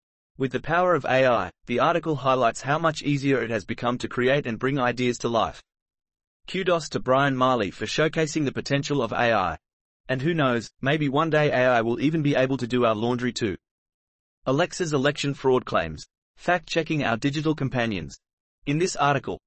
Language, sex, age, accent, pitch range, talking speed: English, male, 30-49, Australian, 125-150 Hz, 180 wpm